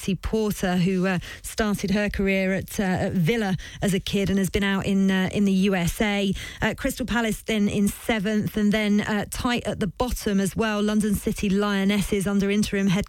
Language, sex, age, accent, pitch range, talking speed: English, female, 30-49, British, 190-210 Hz, 195 wpm